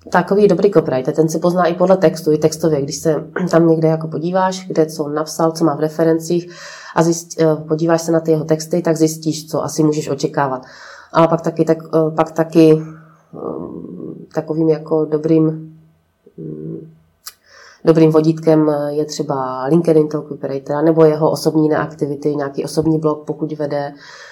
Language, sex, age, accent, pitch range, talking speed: Czech, female, 30-49, native, 150-165 Hz, 160 wpm